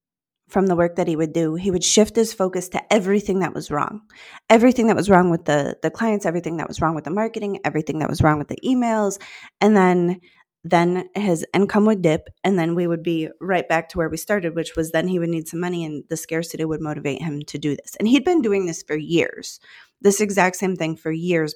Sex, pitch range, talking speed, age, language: female, 165-210 Hz, 240 wpm, 20-39, English